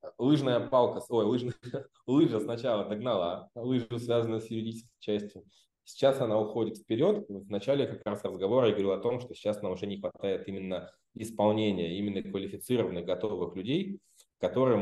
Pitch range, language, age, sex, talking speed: 95-115 Hz, Russian, 20-39, male, 155 wpm